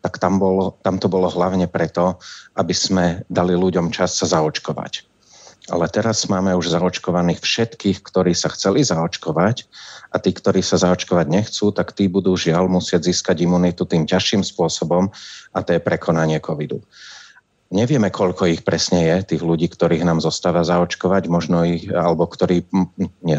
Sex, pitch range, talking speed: male, 85-95 Hz, 155 wpm